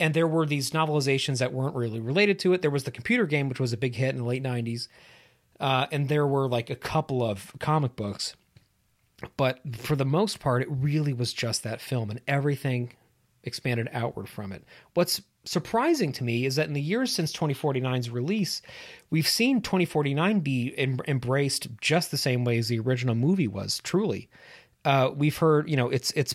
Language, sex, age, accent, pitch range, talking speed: English, male, 30-49, American, 120-150 Hz, 195 wpm